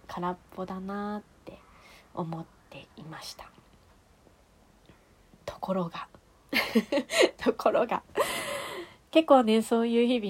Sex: female